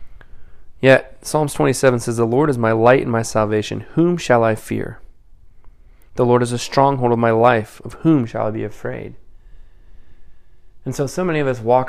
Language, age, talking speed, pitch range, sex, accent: English, 20-39, 185 wpm, 105-125 Hz, male, American